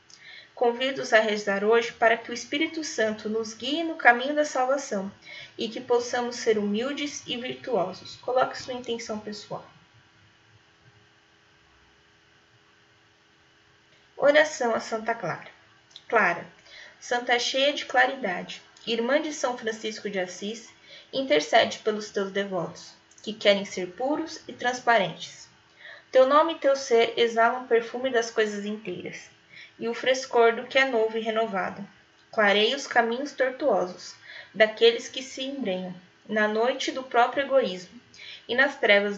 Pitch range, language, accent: 195-250 Hz, Portuguese, Brazilian